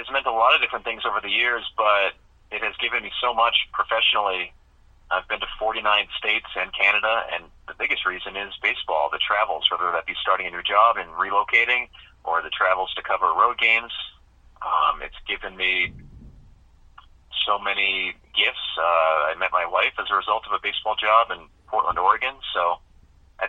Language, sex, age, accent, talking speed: English, male, 30-49, American, 185 wpm